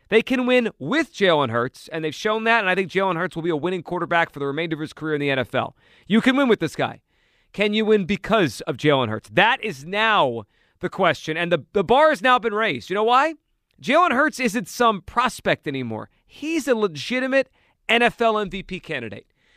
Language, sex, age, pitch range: English, male, 40-59, 165-225 Hz